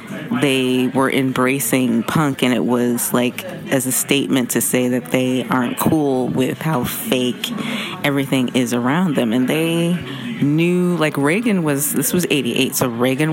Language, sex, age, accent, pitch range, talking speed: English, female, 30-49, American, 130-175 Hz, 160 wpm